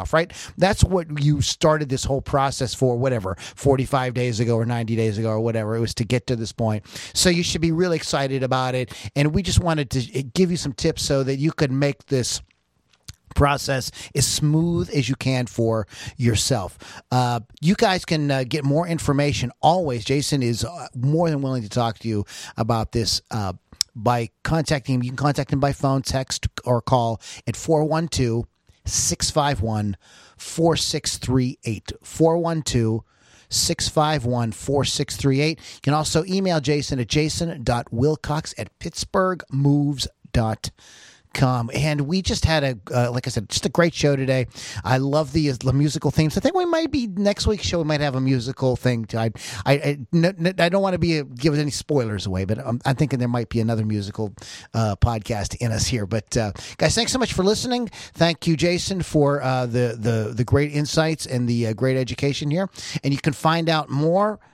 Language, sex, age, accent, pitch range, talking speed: English, male, 40-59, American, 120-155 Hz, 200 wpm